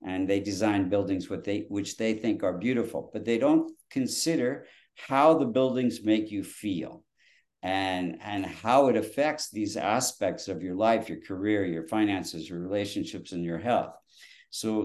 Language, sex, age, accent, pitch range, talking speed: English, male, 50-69, American, 100-120 Hz, 165 wpm